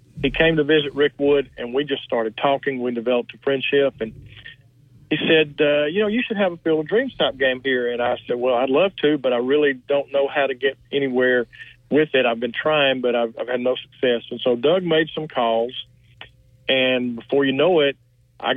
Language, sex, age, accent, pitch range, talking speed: English, male, 50-69, American, 120-140 Hz, 225 wpm